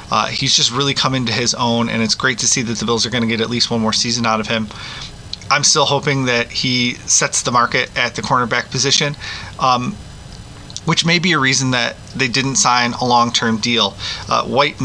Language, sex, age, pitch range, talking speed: English, male, 30-49, 115-135 Hz, 220 wpm